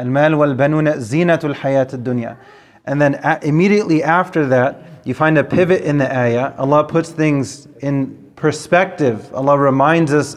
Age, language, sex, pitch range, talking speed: 30-49, English, male, 135-165 Hz, 115 wpm